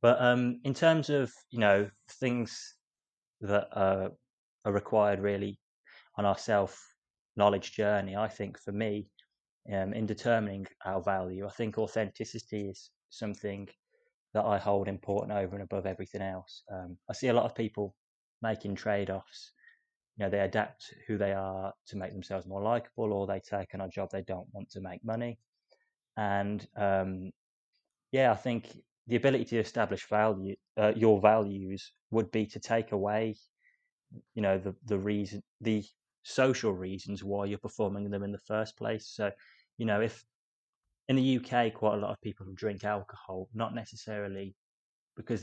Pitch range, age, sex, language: 100-120 Hz, 20-39, male, English